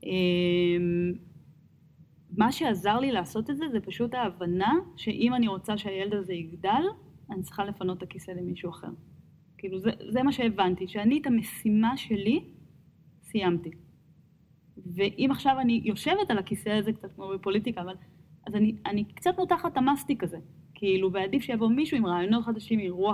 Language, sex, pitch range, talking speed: Hebrew, female, 180-235 Hz, 150 wpm